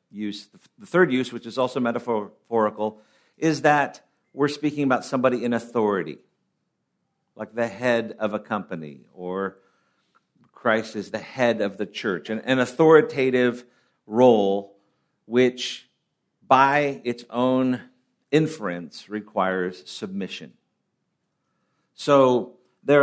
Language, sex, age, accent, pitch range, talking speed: English, male, 50-69, American, 115-145 Hz, 110 wpm